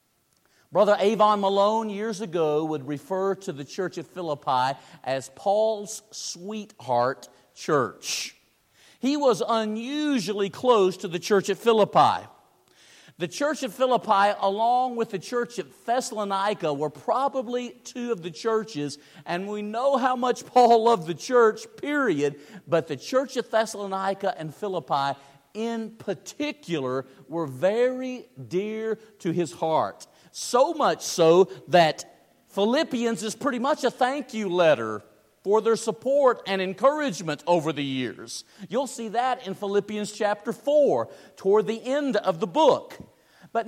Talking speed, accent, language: 135 wpm, American, English